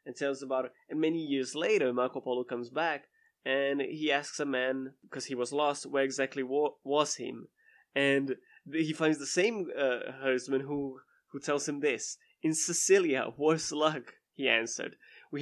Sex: male